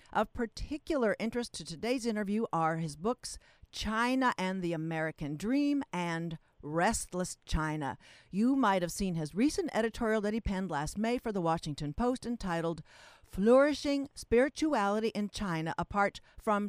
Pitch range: 165-230 Hz